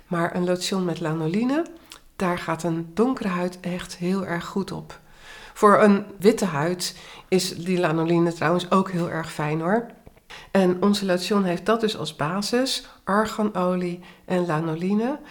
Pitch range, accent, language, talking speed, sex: 170-215 Hz, Dutch, Dutch, 155 wpm, female